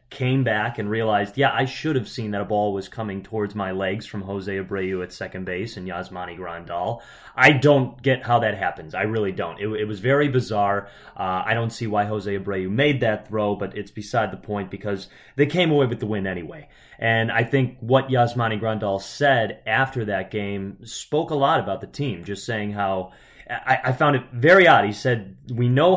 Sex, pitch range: male, 105-135 Hz